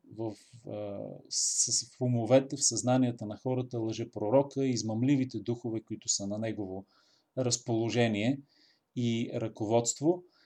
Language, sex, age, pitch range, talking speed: Bulgarian, male, 40-59, 115-140 Hz, 120 wpm